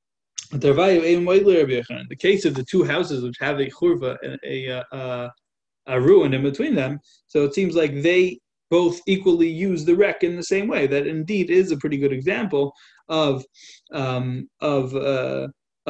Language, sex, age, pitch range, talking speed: English, male, 20-39, 125-155 Hz, 155 wpm